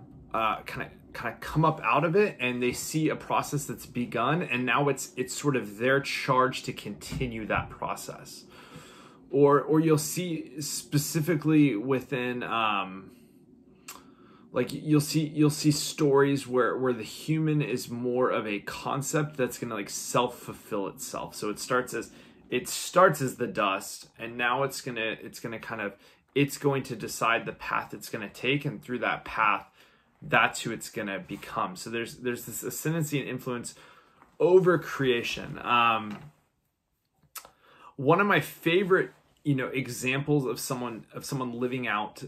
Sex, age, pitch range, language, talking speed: male, 20-39, 115-145 Hz, English, 165 wpm